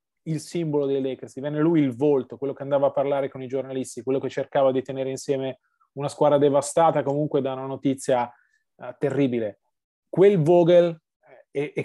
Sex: male